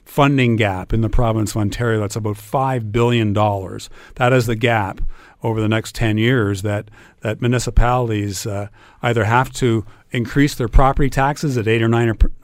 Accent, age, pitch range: American, 50-69, 110-135 Hz